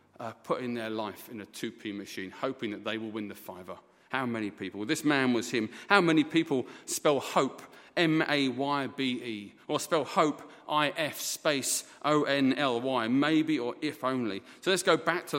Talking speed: 170 wpm